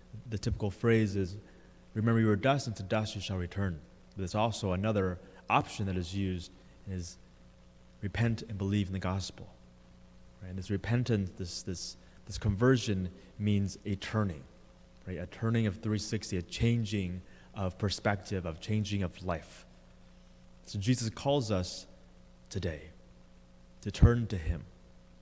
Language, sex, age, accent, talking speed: English, male, 30-49, American, 145 wpm